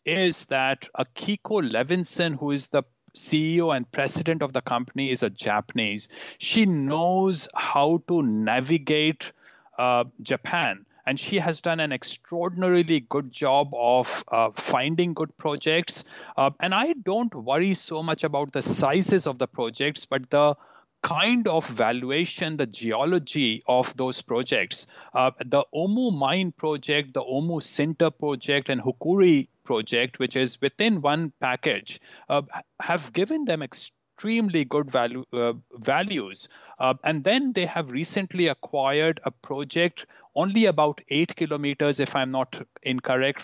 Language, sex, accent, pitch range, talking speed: English, male, Indian, 135-170 Hz, 140 wpm